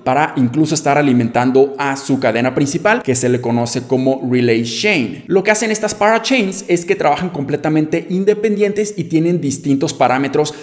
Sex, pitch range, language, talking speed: male, 135-185 Hz, Spanish, 165 wpm